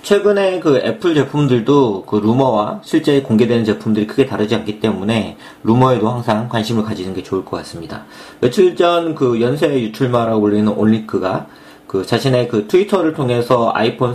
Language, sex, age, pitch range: Korean, male, 40-59, 110-155 Hz